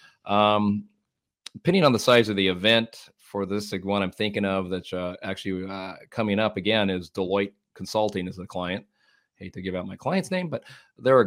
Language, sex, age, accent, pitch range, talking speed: English, male, 40-59, American, 95-115 Hz, 200 wpm